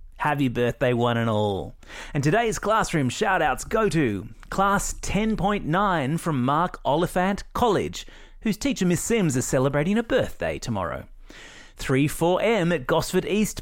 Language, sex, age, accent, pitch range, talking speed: English, male, 30-49, Australian, 120-190 Hz, 130 wpm